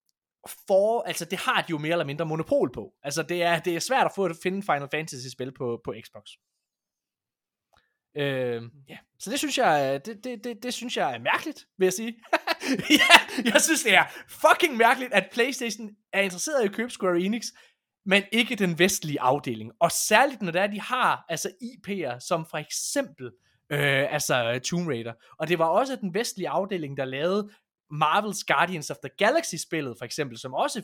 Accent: native